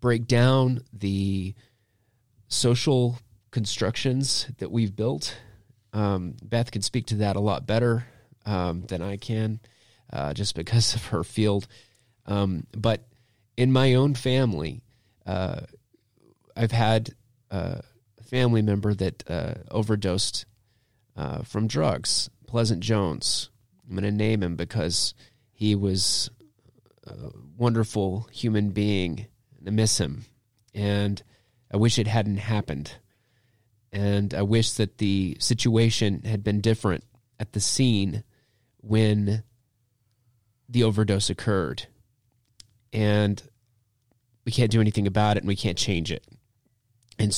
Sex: male